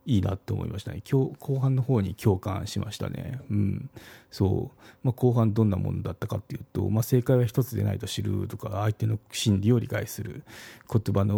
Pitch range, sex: 100-125 Hz, male